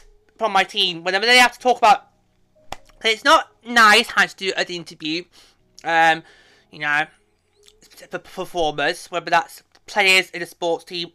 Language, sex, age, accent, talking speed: English, male, 20-39, British, 155 wpm